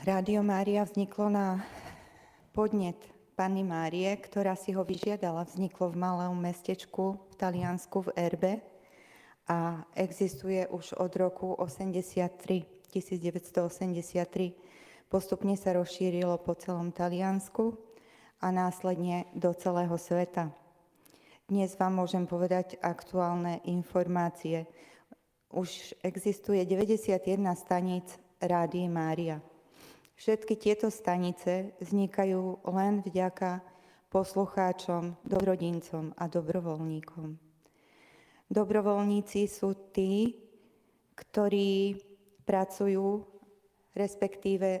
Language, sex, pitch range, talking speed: Slovak, female, 180-195 Hz, 85 wpm